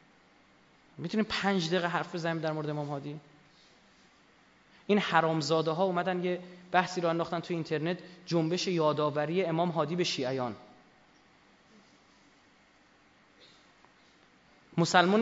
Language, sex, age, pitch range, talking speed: Persian, male, 30-49, 155-195 Hz, 105 wpm